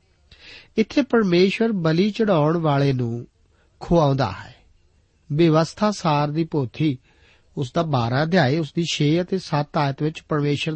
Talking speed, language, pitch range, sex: 135 wpm, Punjabi, 125-175 Hz, male